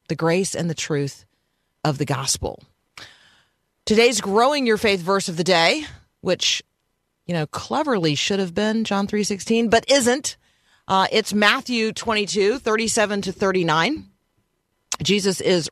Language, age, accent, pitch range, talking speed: English, 40-59, American, 160-205 Hz, 155 wpm